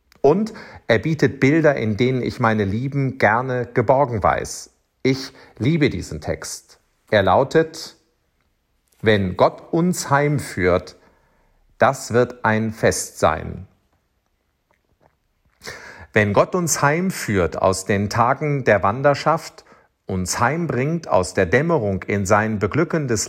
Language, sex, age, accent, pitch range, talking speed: German, male, 50-69, German, 105-155 Hz, 115 wpm